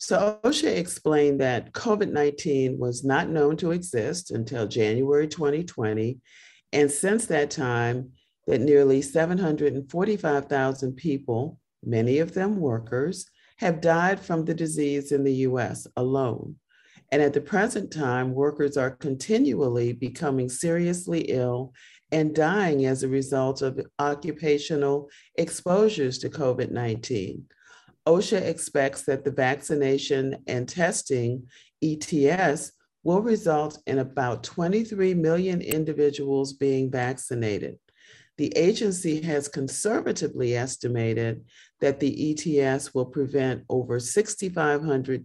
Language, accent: English, American